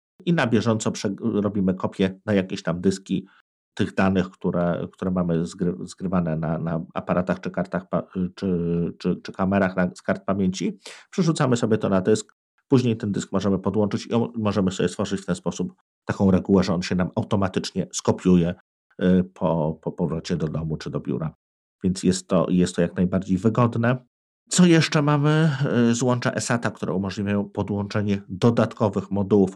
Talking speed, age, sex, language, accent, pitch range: 175 wpm, 50-69, male, Polish, native, 90-110 Hz